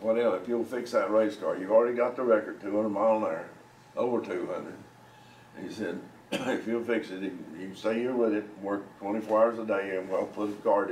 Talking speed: 230 wpm